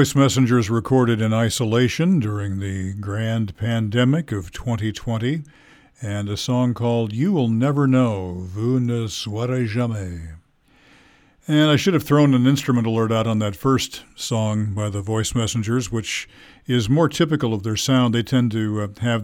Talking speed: 160 wpm